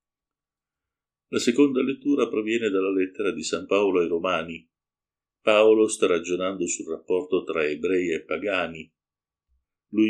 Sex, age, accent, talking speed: male, 50-69, native, 125 wpm